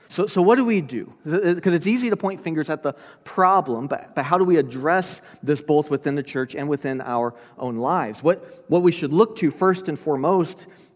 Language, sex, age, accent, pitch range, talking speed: English, male, 40-59, American, 135-180 Hz, 220 wpm